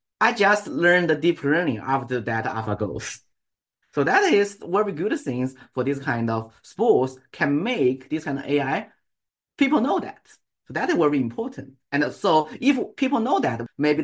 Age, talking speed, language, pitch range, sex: 30-49, 180 wpm, English, 125-190 Hz, male